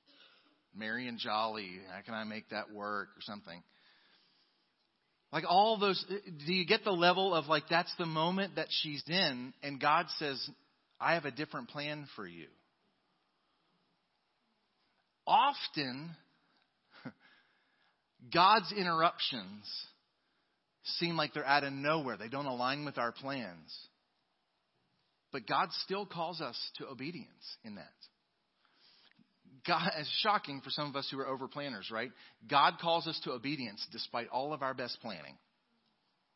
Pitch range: 130-175 Hz